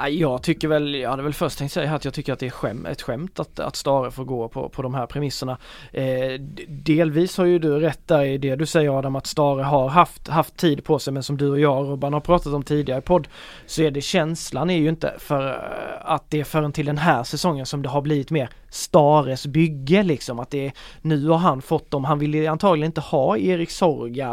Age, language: 20-39, Swedish